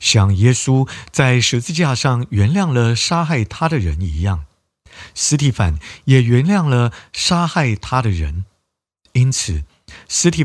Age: 50-69